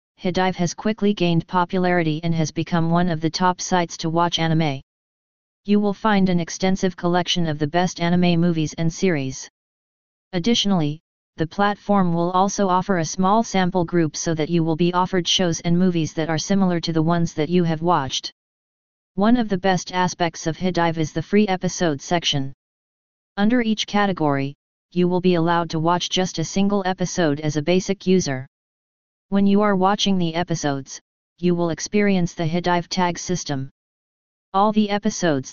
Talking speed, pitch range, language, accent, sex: 175 wpm, 160-185 Hz, English, American, female